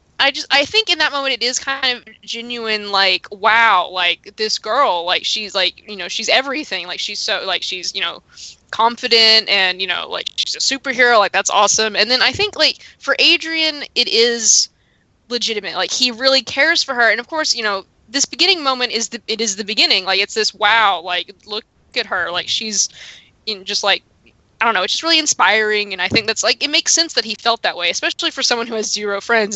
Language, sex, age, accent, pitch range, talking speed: English, female, 20-39, American, 205-265 Hz, 225 wpm